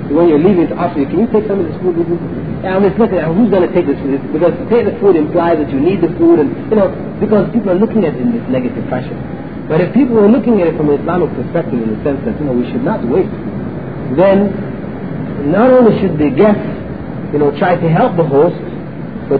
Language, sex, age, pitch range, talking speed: English, male, 40-59, 160-215 Hz, 250 wpm